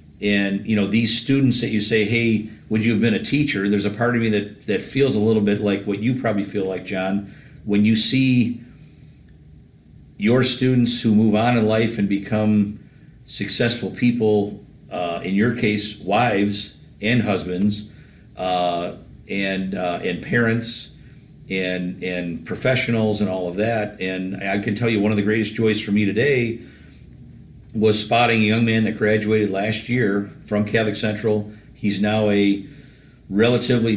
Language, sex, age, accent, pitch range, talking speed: English, male, 50-69, American, 100-120 Hz, 170 wpm